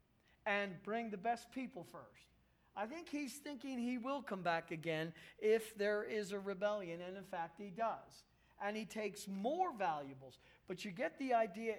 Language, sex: English, male